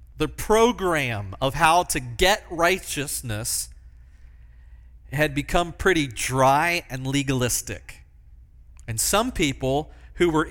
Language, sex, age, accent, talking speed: English, male, 40-59, American, 105 wpm